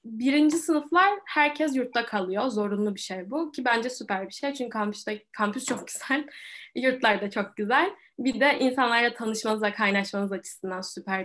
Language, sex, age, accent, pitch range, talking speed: Turkish, female, 10-29, native, 210-290 Hz, 155 wpm